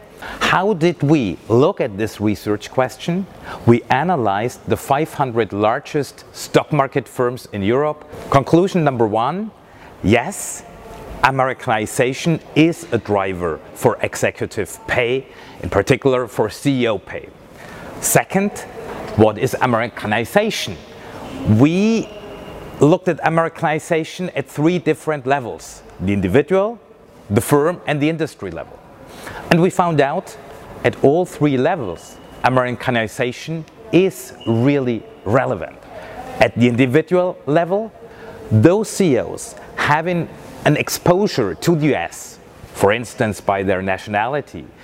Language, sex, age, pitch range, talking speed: French, male, 40-59, 115-170 Hz, 110 wpm